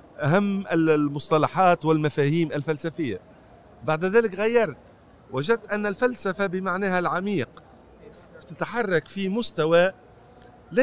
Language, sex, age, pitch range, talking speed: Arabic, male, 40-59, 150-210 Hz, 90 wpm